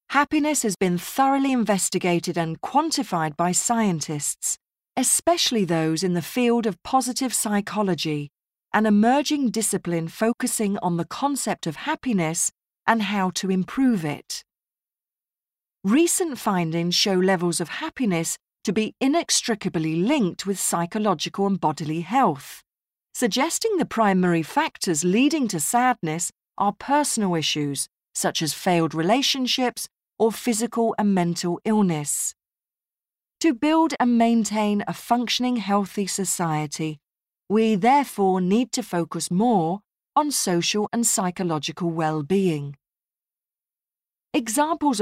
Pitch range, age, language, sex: 175-245 Hz, 40-59, Japanese, female